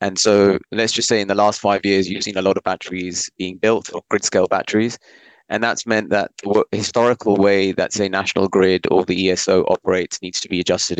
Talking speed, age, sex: 225 wpm, 30-49, male